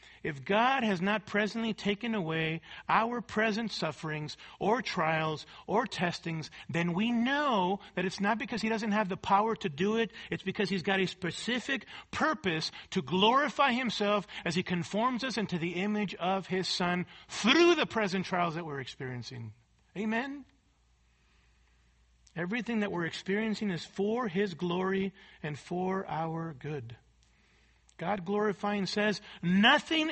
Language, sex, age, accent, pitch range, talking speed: English, male, 50-69, American, 170-230 Hz, 145 wpm